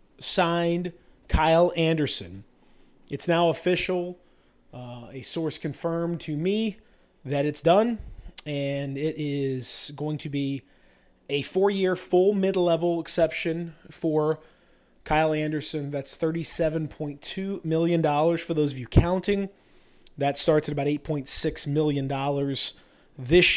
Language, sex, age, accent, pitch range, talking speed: English, male, 20-39, American, 140-170 Hz, 115 wpm